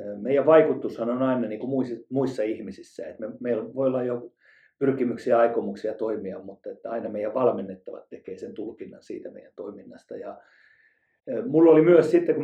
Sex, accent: male, native